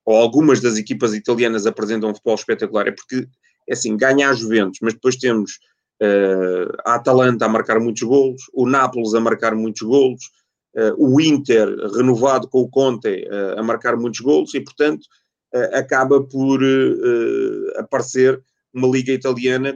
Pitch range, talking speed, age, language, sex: 115-130 Hz, 160 wpm, 30-49, Portuguese, male